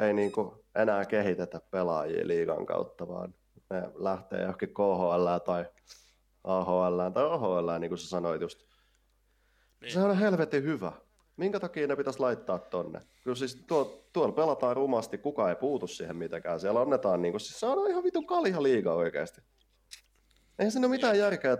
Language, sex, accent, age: Finnish, male, native, 30-49